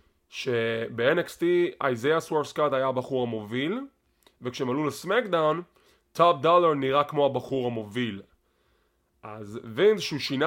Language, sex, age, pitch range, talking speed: English, male, 20-39, 130-165 Hz, 105 wpm